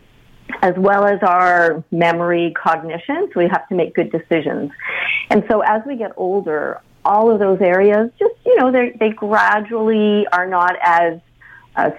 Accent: American